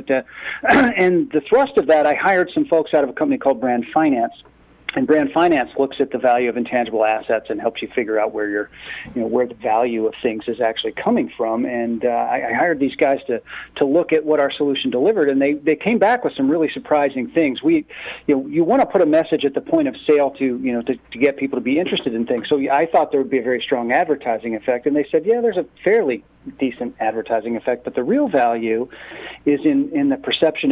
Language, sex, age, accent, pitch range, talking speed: English, male, 40-59, American, 120-150 Hz, 250 wpm